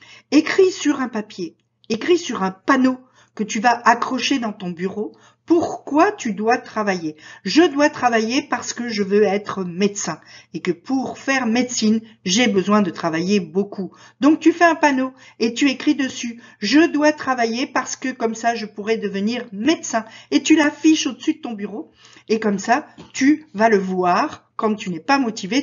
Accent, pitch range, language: French, 185-260 Hz, French